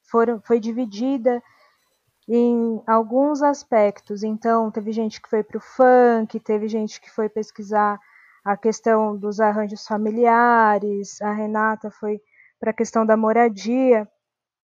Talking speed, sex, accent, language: 125 wpm, female, Brazilian, Portuguese